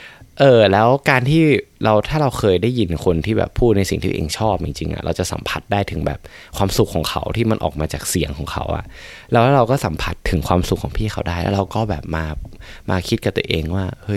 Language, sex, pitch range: Thai, male, 90-110 Hz